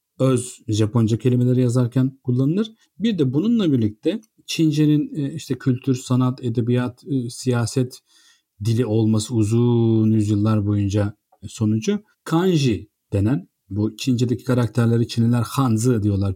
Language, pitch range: Turkish, 110-155 Hz